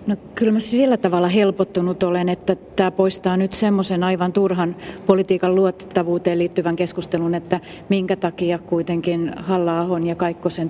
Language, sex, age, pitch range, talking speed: Finnish, female, 40-59, 165-185 Hz, 140 wpm